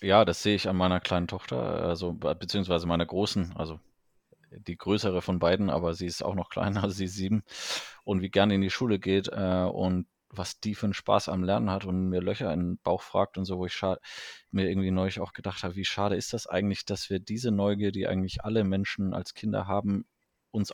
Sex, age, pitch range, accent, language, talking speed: male, 20-39, 90-100 Hz, German, German, 225 wpm